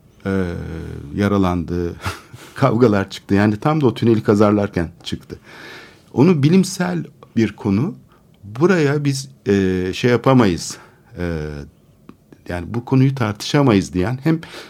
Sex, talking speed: male, 110 wpm